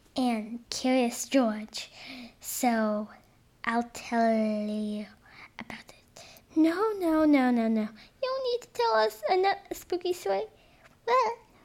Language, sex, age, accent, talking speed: English, female, 10-29, American, 125 wpm